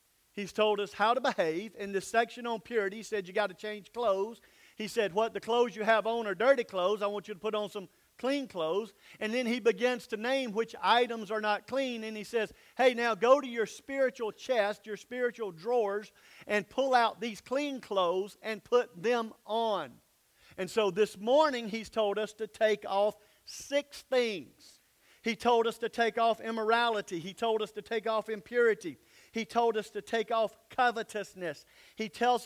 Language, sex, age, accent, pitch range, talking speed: English, male, 50-69, American, 205-235 Hz, 200 wpm